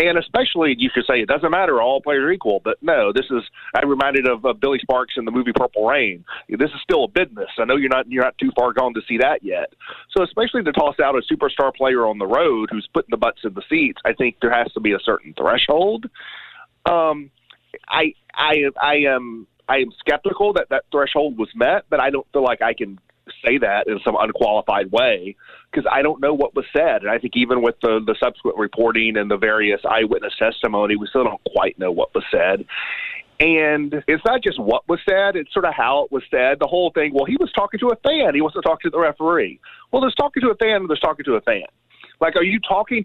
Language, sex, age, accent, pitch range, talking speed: English, male, 30-49, American, 130-215 Hz, 240 wpm